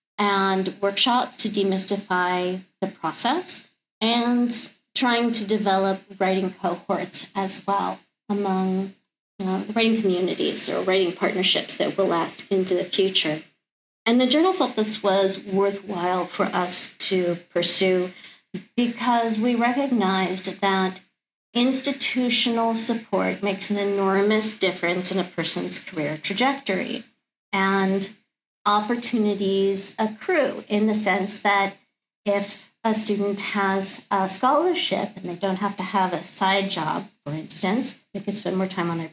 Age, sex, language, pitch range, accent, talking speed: 50-69, female, English, 190-220 Hz, American, 125 wpm